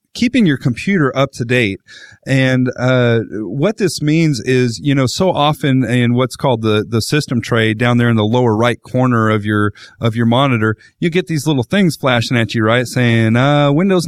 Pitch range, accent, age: 115-140 Hz, American, 40-59